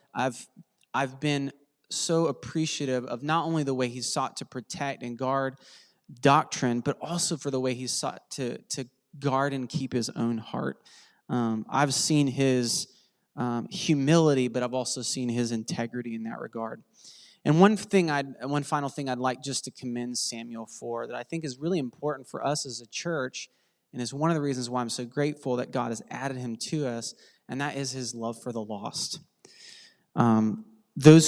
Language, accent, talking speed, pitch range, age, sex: English, American, 190 wpm, 120-145 Hz, 20-39, male